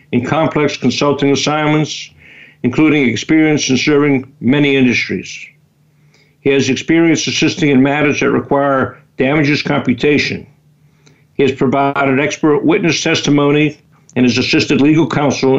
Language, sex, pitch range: English, male, 130-150 Hz